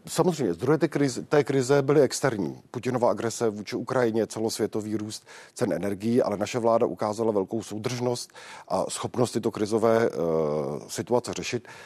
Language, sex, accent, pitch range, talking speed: Czech, male, native, 105-120 Hz, 135 wpm